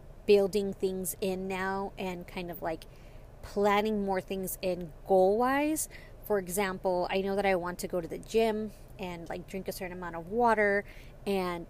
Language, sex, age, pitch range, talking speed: English, female, 20-39, 180-210 Hz, 175 wpm